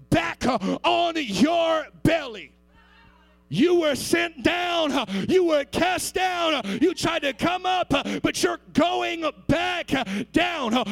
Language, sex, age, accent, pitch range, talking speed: English, male, 30-49, American, 245-330 Hz, 120 wpm